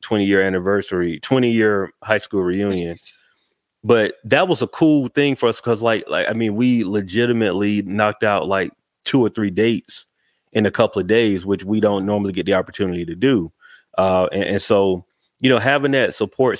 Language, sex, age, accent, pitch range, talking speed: English, male, 30-49, American, 90-115 Hz, 190 wpm